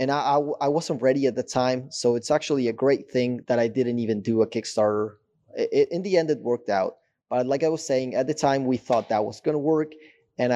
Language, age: English, 20-39